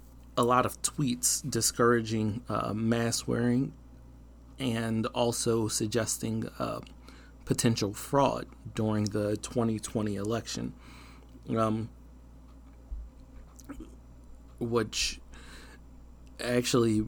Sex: male